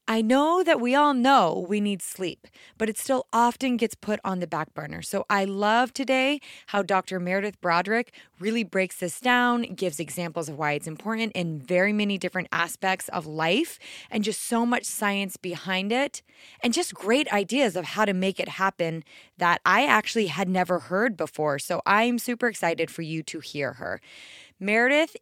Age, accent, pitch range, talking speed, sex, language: 20-39, American, 175-225 Hz, 185 wpm, female, English